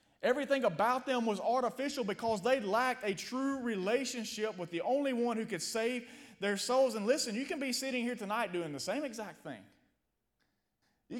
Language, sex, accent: English, male, American